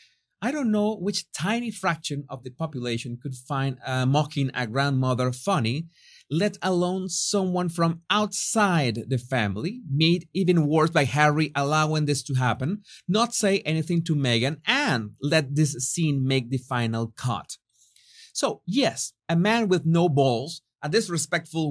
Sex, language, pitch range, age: male, English, 130-200 Hz, 30-49